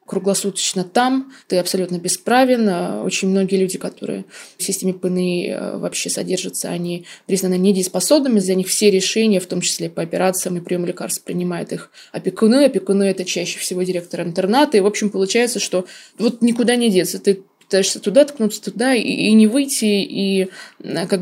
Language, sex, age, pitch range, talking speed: Russian, female, 20-39, 185-215 Hz, 165 wpm